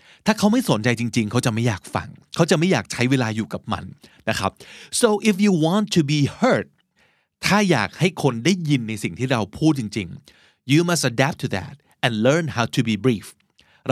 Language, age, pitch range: Thai, 30-49, 115-160 Hz